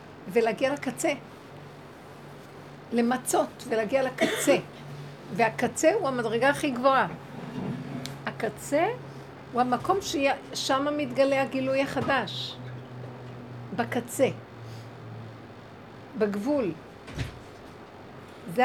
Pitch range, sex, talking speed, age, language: 215-275 Hz, female, 65 wpm, 60-79, Hebrew